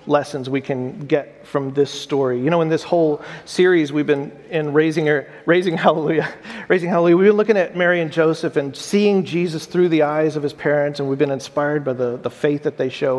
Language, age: English, 40-59